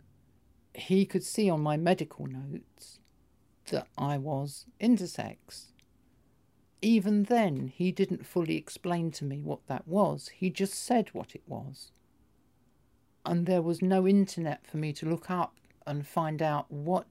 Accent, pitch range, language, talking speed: British, 125-165 Hz, English, 145 wpm